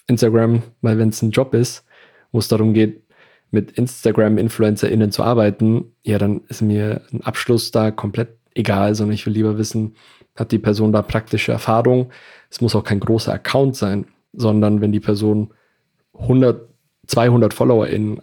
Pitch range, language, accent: 105-120 Hz, German, German